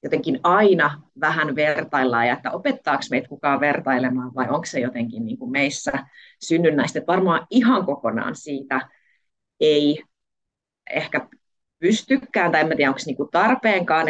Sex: female